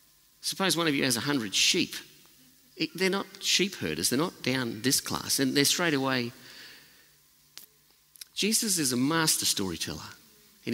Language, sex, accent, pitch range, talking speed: English, male, Australian, 110-160 Hz, 150 wpm